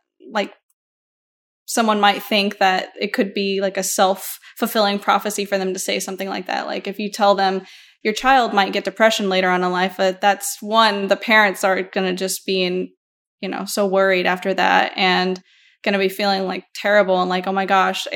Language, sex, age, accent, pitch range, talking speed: English, female, 10-29, American, 190-205 Hz, 205 wpm